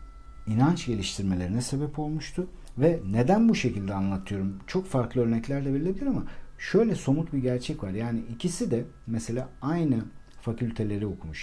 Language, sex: Turkish, male